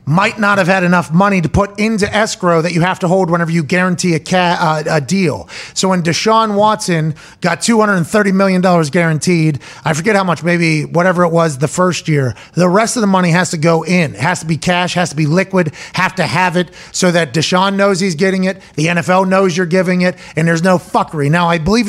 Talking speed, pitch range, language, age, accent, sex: 225 wpm, 170-195 Hz, English, 30-49, American, male